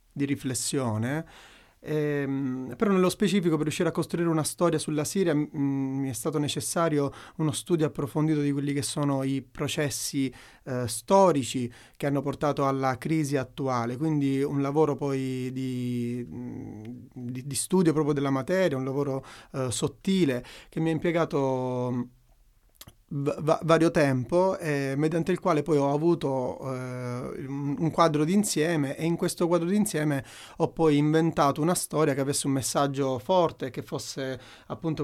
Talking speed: 145 wpm